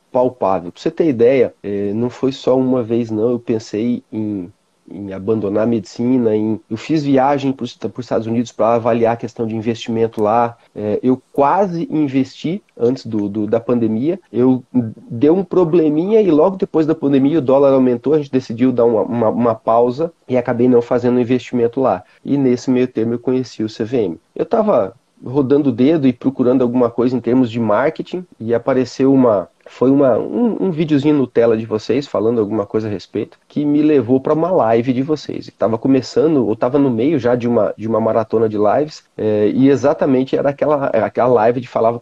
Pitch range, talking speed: 115-145 Hz, 195 wpm